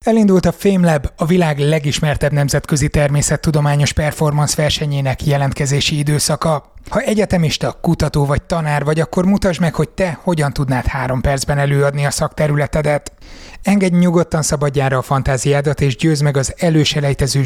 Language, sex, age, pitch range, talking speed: Hungarian, male, 30-49, 140-155 Hz, 135 wpm